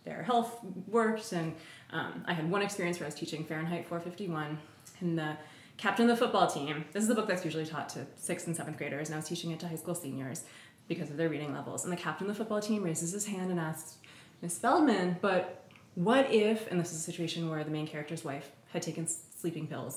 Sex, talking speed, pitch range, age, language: female, 235 wpm, 160-210 Hz, 20-39, English